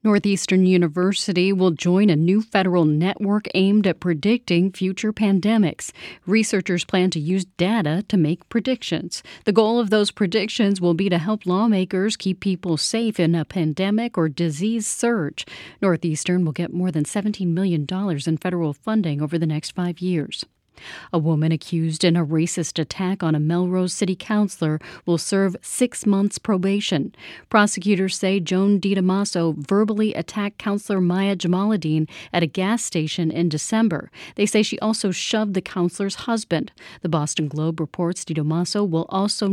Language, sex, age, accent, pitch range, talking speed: English, female, 40-59, American, 165-205 Hz, 155 wpm